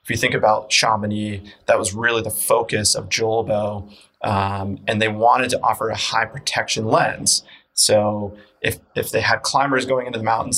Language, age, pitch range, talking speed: English, 20-39, 105-115 Hz, 180 wpm